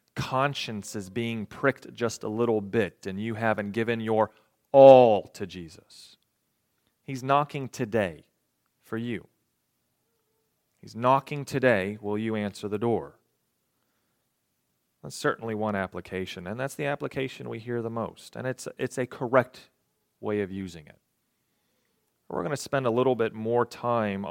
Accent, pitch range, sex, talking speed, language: American, 105-130 Hz, male, 145 wpm, English